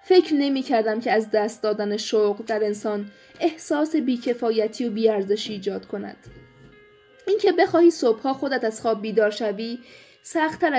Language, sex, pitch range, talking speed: Persian, female, 215-250 Hz, 145 wpm